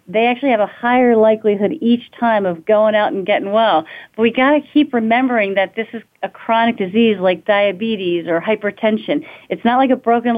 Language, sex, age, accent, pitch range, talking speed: English, female, 40-59, American, 195-235 Hz, 200 wpm